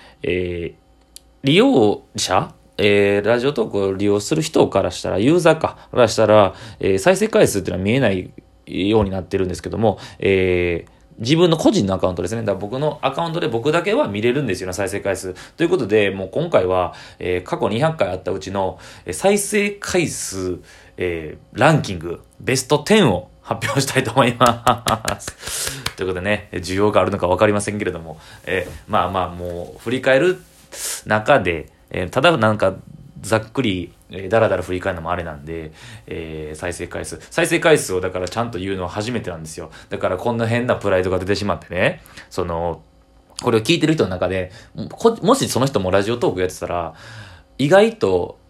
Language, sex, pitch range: Japanese, male, 90-125 Hz